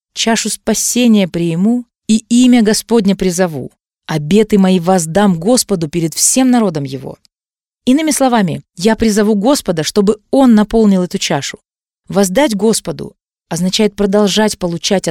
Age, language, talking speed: 20-39, Russian, 120 wpm